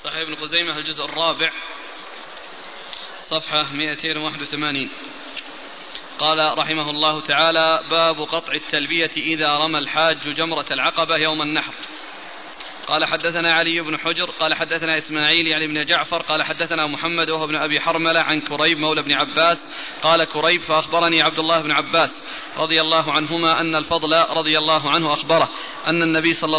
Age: 20-39